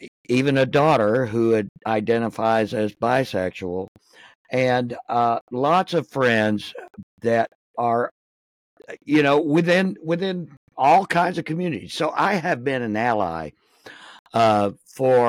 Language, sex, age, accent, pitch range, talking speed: English, male, 60-79, American, 110-145 Hz, 120 wpm